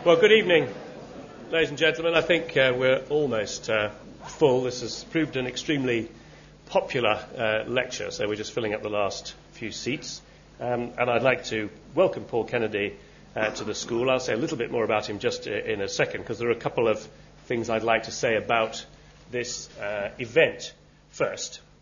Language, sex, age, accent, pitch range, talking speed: English, male, 40-59, British, 105-145 Hz, 195 wpm